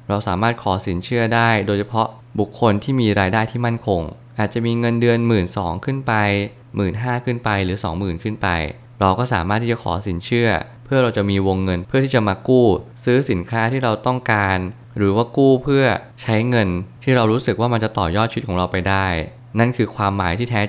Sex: male